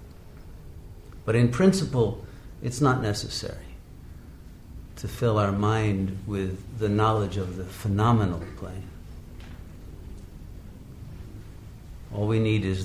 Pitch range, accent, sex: 90-110 Hz, American, male